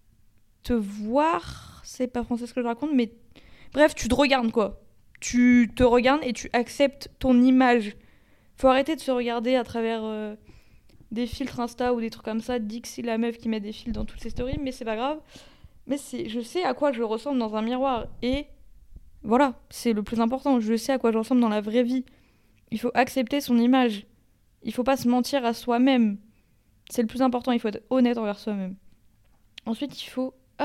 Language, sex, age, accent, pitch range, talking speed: French, female, 20-39, French, 225-265 Hz, 210 wpm